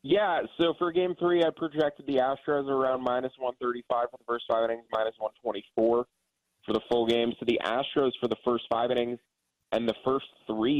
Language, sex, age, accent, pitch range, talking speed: English, male, 30-49, American, 100-120 Hz, 195 wpm